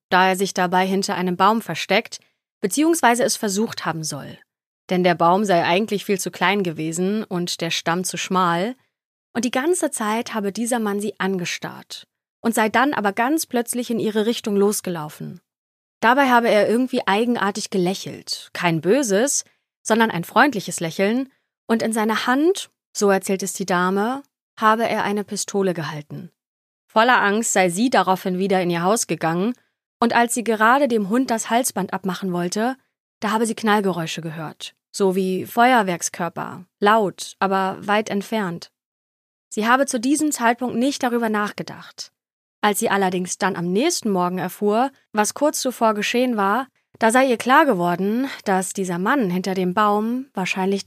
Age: 30-49